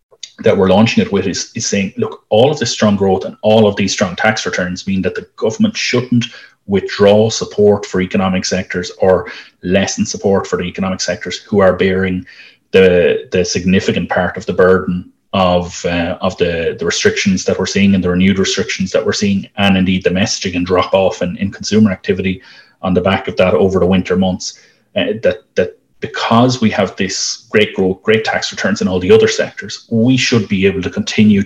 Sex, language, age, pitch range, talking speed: male, English, 30-49, 95-125 Hz, 205 wpm